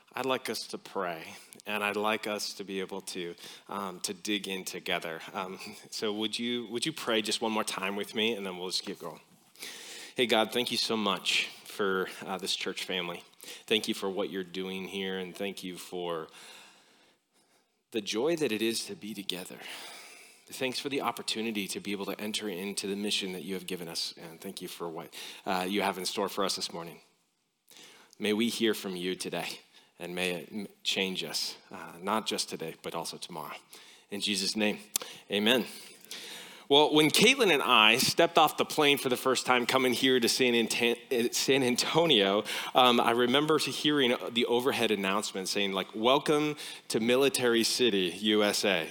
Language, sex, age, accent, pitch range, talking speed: English, male, 30-49, American, 100-130 Hz, 185 wpm